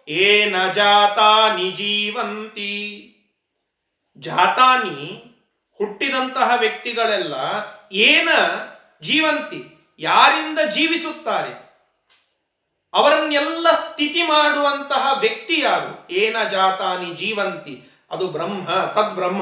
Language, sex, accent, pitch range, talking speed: Kannada, male, native, 205-300 Hz, 65 wpm